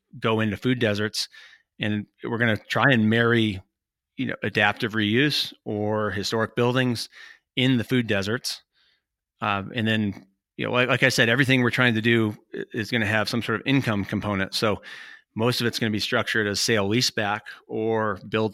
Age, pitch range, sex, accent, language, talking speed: 30-49, 105-120 Hz, male, American, English, 190 wpm